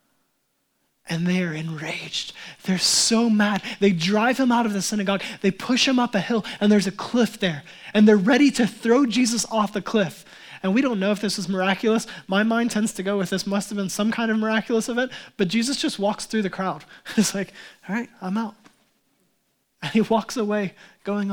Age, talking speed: 20-39, 210 wpm